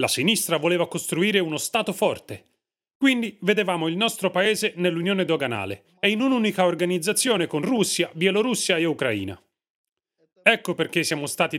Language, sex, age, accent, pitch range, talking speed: Italian, male, 30-49, native, 145-205 Hz, 140 wpm